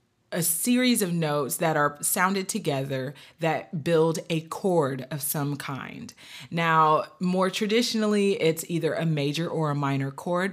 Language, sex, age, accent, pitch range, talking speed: English, female, 30-49, American, 155-195 Hz, 150 wpm